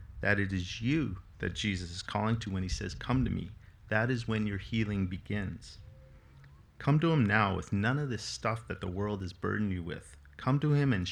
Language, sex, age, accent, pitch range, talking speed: English, male, 40-59, American, 95-120 Hz, 220 wpm